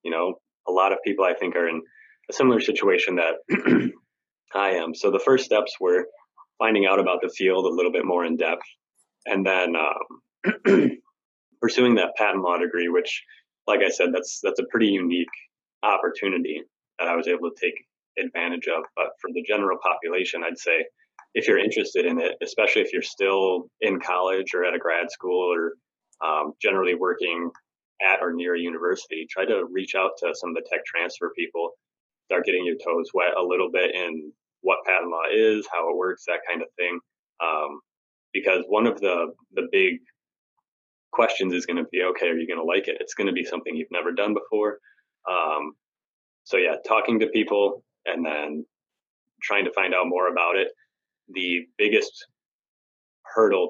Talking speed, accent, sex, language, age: 185 wpm, American, male, English, 30-49